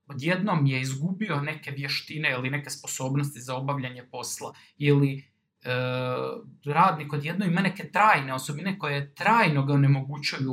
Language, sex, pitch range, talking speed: Croatian, male, 130-180 Hz, 130 wpm